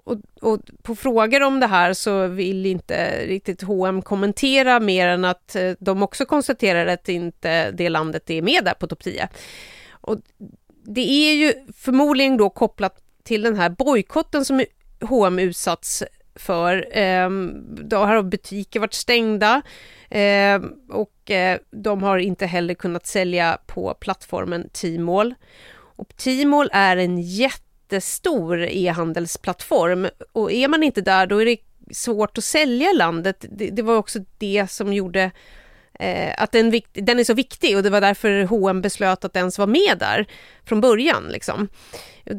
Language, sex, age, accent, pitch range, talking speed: Swedish, female, 30-49, native, 180-240 Hz, 155 wpm